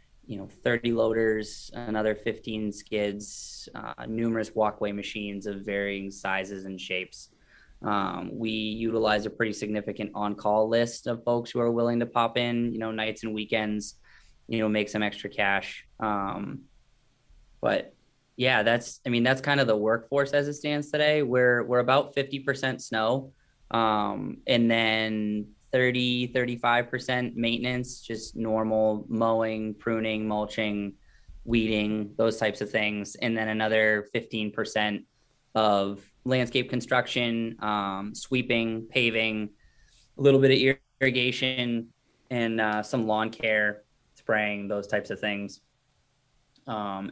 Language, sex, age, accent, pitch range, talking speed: English, male, 20-39, American, 105-125 Hz, 135 wpm